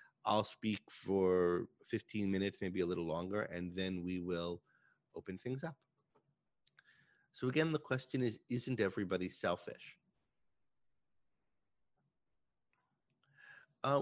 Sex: male